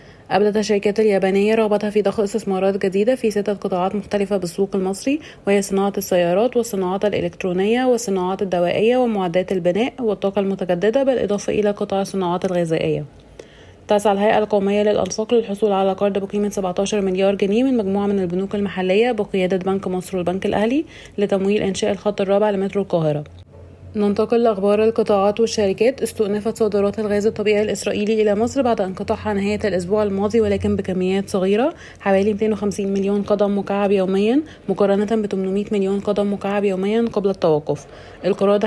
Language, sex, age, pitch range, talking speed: Arabic, female, 30-49, 195-215 Hz, 145 wpm